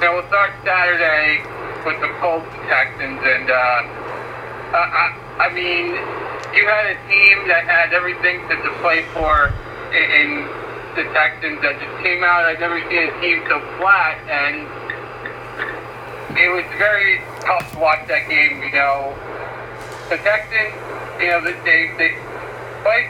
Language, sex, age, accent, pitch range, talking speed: English, male, 50-69, American, 150-195 Hz, 155 wpm